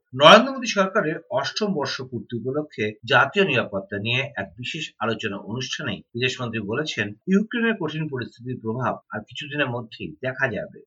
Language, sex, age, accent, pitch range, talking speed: Bengali, male, 50-69, native, 125-170 Hz, 140 wpm